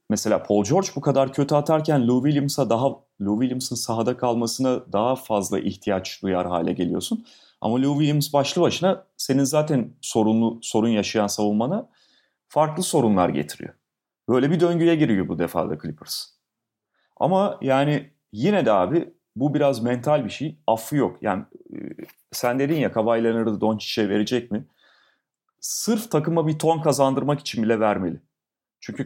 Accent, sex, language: native, male, Turkish